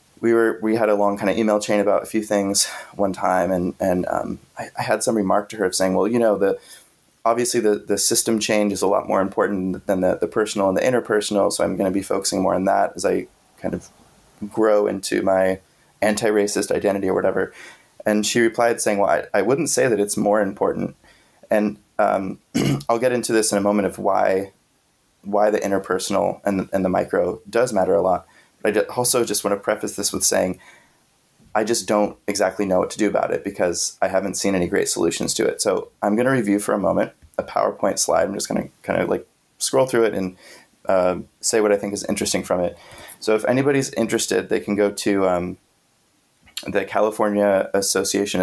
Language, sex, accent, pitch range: English, male, American, 100-110 Hz